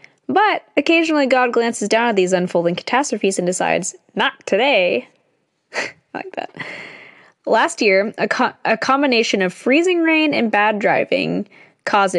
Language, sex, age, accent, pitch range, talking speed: English, female, 10-29, American, 195-270 Hz, 145 wpm